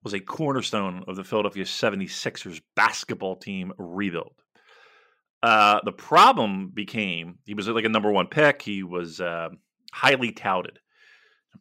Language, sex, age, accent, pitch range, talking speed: English, male, 40-59, American, 100-140 Hz, 140 wpm